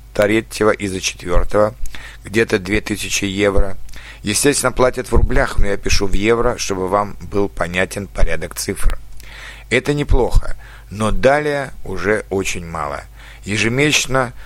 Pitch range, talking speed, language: 100-120 Hz, 125 wpm, Russian